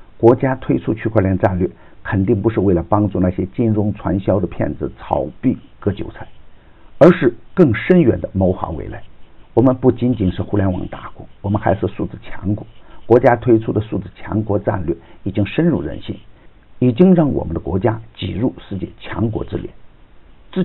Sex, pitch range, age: male, 95-120 Hz, 50-69